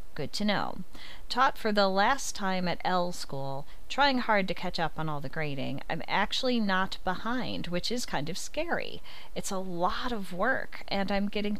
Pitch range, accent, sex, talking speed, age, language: 155-215 Hz, American, female, 190 wpm, 40-59, English